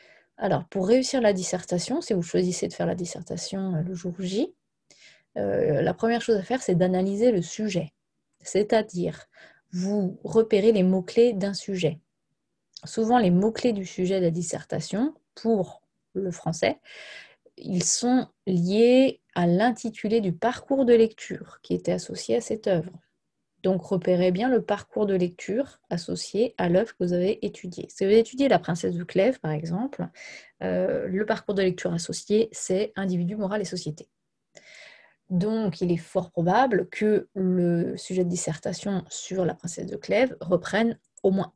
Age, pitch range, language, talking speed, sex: 20-39, 180-225 Hz, French, 160 wpm, female